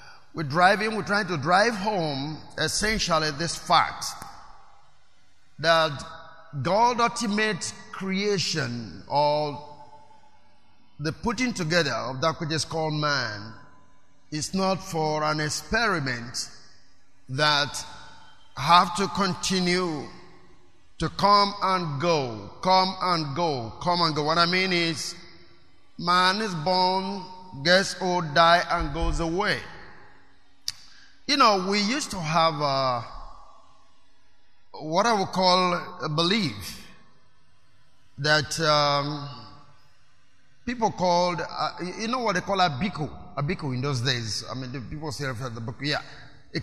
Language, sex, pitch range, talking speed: English, male, 145-185 Hz, 125 wpm